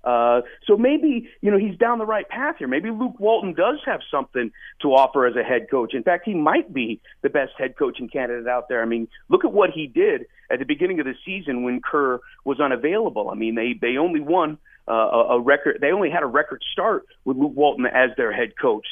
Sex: male